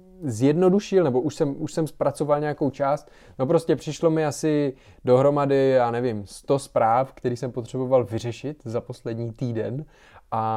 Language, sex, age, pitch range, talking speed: Czech, male, 20-39, 120-145 Hz, 155 wpm